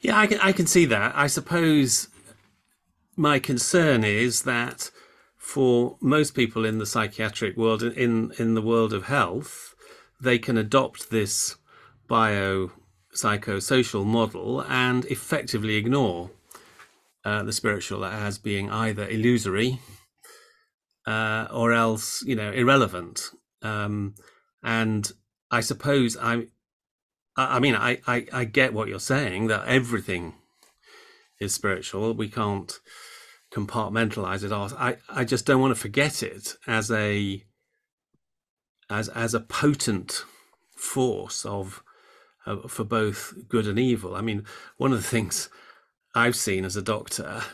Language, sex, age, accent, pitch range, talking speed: English, male, 40-59, British, 105-125 Hz, 130 wpm